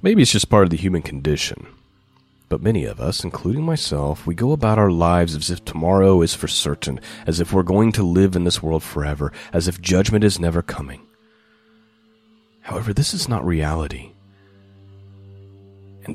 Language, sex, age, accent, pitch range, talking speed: English, male, 30-49, American, 80-110 Hz, 175 wpm